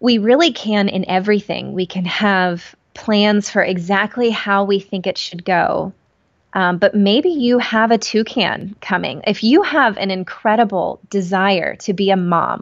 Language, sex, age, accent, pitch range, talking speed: English, female, 20-39, American, 185-220 Hz, 165 wpm